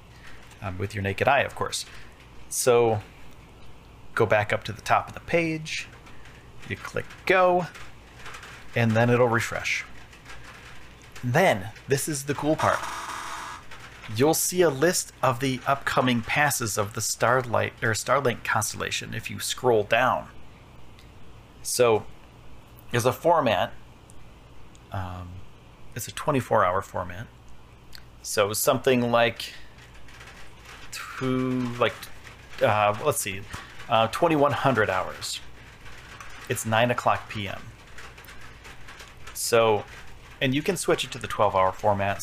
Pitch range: 100-130 Hz